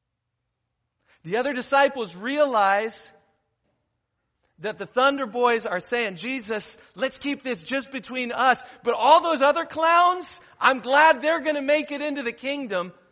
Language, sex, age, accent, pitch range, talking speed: English, male, 40-59, American, 120-200 Hz, 145 wpm